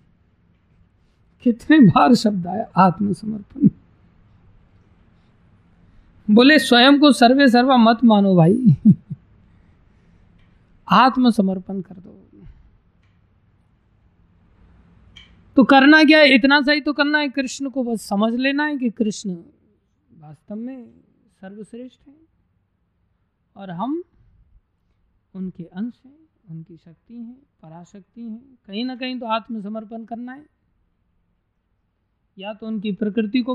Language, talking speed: Hindi, 105 wpm